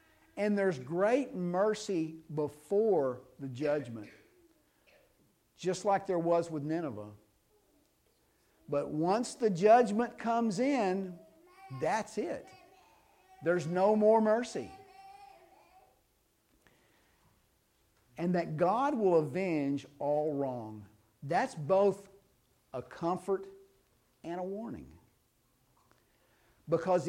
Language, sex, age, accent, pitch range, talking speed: English, male, 50-69, American, 130-195 Hz, 90 wpm